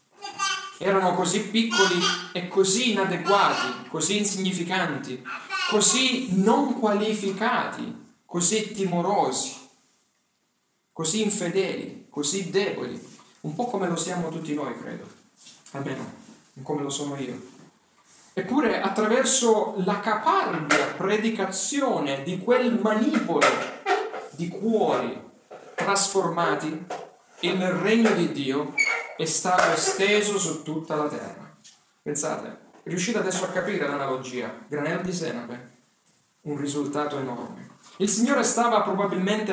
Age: 40-59